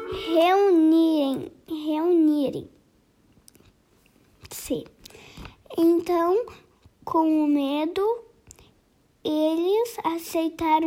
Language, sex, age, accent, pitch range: Portuguese, female, 10-29, Brazilian, 295-365 Hz